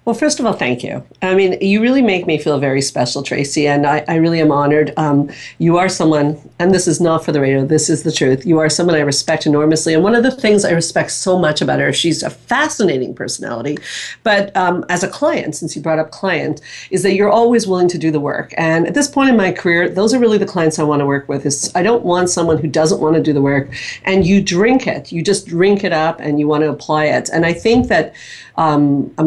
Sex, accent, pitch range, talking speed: female, American, 155-190 Hz, 260 wpm